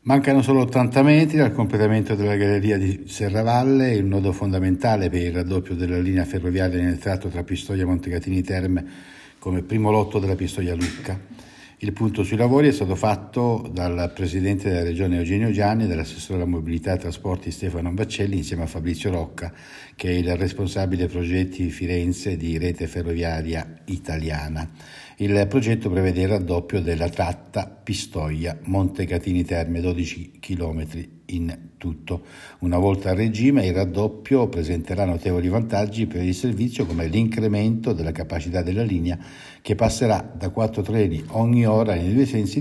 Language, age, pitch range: Italian, 60-79, 90-105 Hz